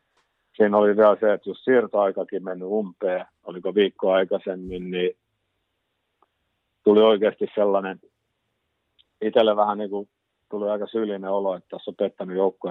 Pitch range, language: 95-105 Hz, Finnish